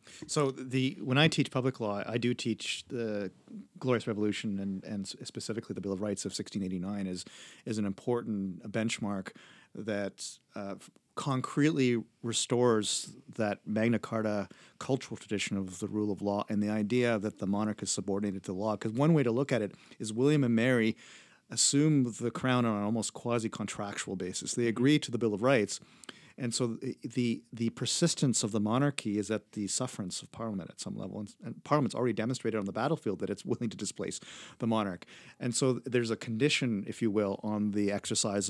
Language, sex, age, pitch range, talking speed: English, male, 40-59, 105-125 Hz, 190 wpm